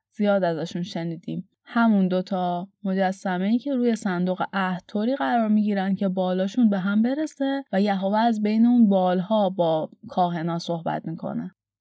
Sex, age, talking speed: female, 20-39, 160 wpm